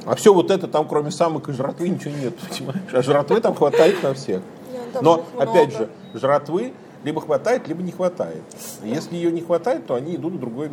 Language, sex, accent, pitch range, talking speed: Russian, male, native, 115-175 Hz, 200 wpm